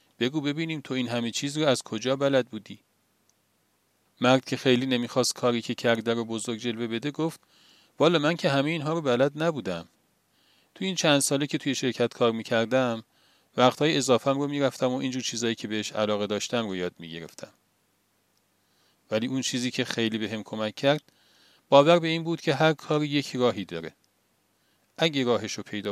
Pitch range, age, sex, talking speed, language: 110-140 Hz, 40-59, male, 175 wpm, Persian